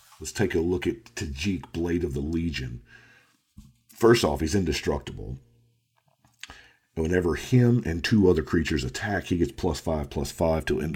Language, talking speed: English, 160 wpm